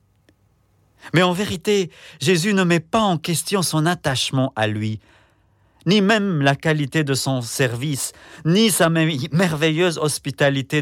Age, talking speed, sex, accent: 50-69, 135 wpm, male, French